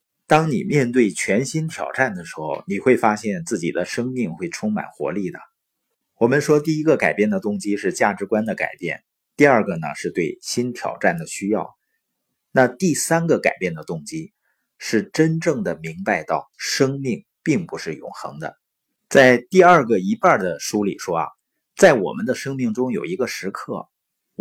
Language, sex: Chinese, male